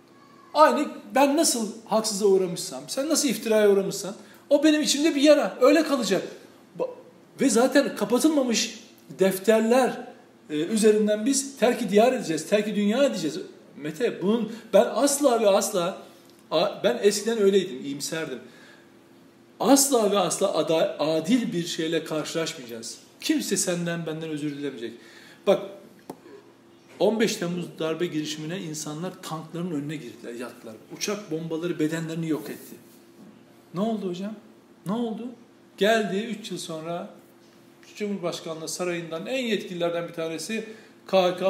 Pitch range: 165-230 Hz